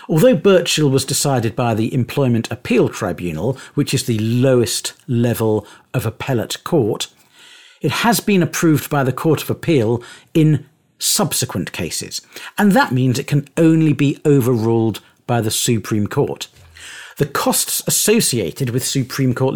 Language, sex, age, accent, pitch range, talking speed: English, male, 50-69, British, 115-155 Hz, 145 wpm